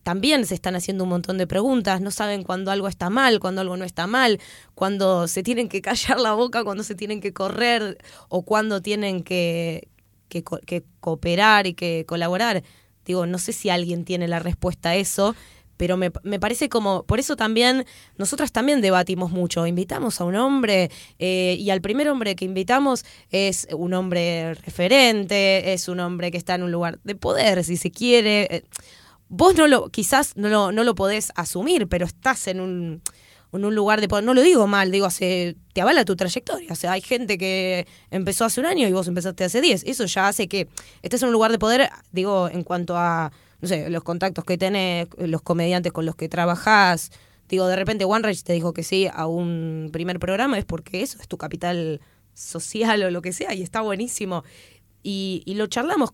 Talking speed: 200 wpm